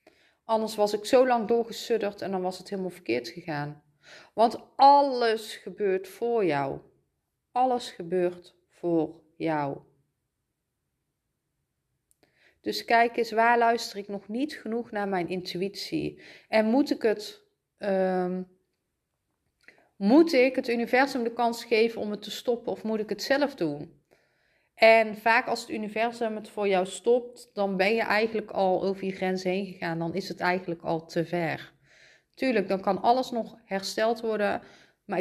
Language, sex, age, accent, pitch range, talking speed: Dutch, female, 30-49, Dutch, 185-235 Hz, 150 wpm